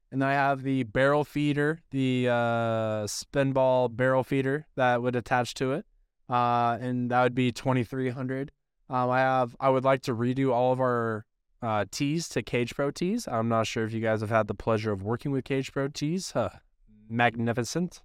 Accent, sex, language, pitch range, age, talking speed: American, male, English, 110-130 Hz, 20-39, 195 wpm